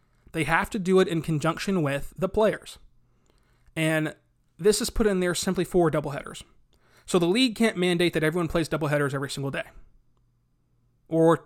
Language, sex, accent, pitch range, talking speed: English, male, American, 145-175 Hz, 170 wpm